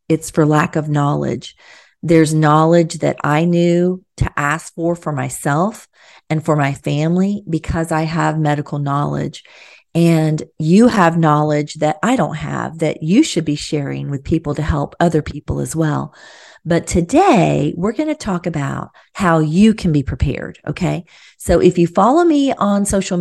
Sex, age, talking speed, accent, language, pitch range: female, 40-59, 170 wpm, American, English, 145-170 Hz